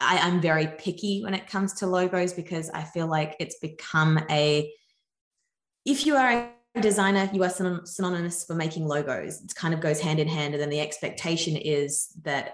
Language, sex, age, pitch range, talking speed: English, female, 20-39, 155-190 Hz, 185 wpm